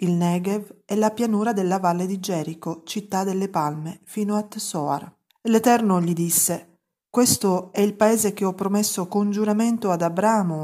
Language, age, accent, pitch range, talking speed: Italian, 40-59, native, 175-210 Hz, 160 wpm